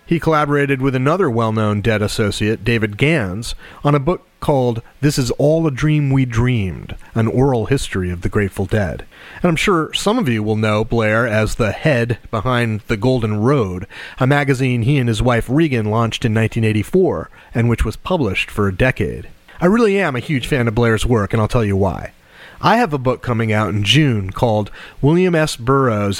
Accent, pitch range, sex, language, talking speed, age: American, 110-145 Hz, male, English, 195 wpm, 30-49